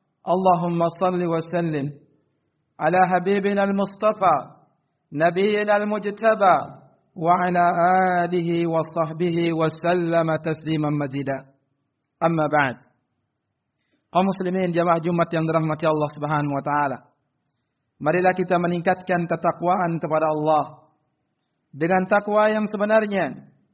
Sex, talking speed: male, 100 wpm